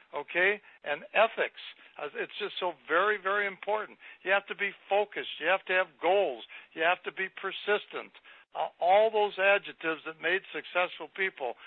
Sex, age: male, 60-79